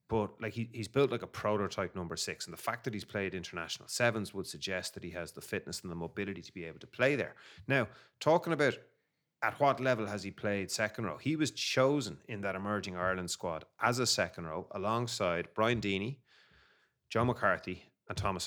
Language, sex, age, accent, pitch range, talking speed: English, male, 30-49, Irish, 90-115 Hz, 200 wpm